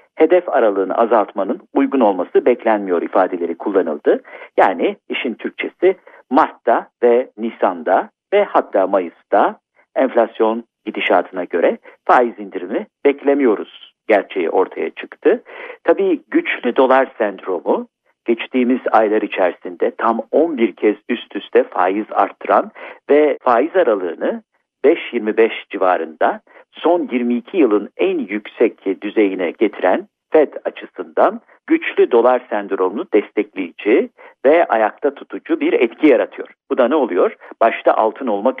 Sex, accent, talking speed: male, native, 110 wpm